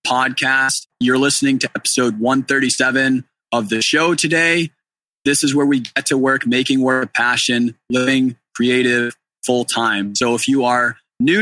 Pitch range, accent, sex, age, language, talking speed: 120-135 Hz, American, male, 20-39, English, 150 wpm